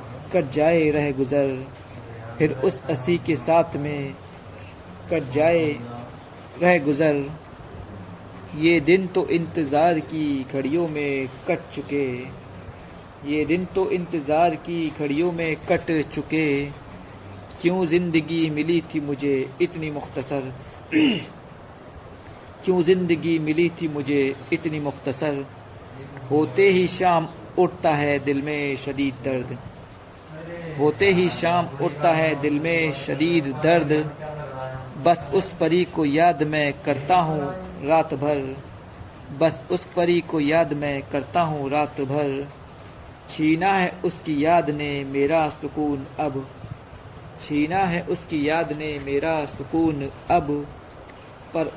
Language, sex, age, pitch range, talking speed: Hindi, male, 50-69, 135-165 Hz, 115 wpm